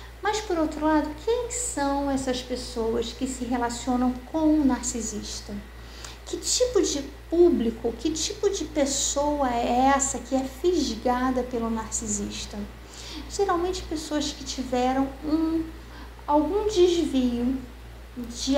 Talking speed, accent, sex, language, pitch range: 115 wpm, Brazilian, female, Portuguese, 240-300 Hz